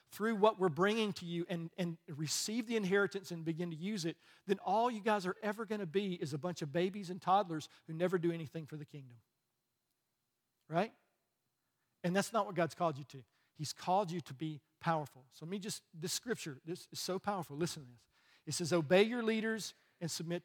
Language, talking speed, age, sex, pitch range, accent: English, 215 wpm, 40-59, male, 155-200 Hz, American